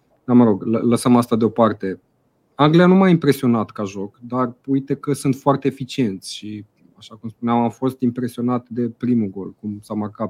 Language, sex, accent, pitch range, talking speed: Romanian, male, native, 100-120 Hz, 180 wpm